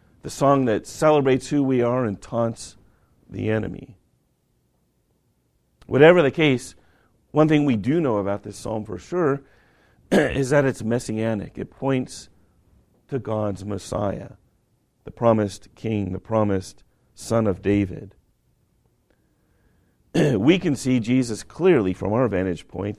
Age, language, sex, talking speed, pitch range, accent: 50-69, English, male, 130 wpm, 100-125 Hz, American